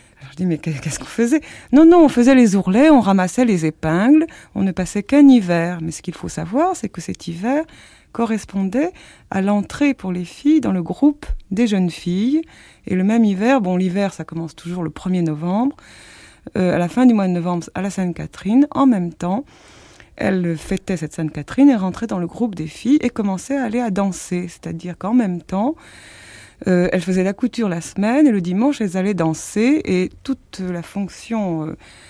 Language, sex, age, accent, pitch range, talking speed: French, female, 30-49, French, 175-245 Hz, 200 wpm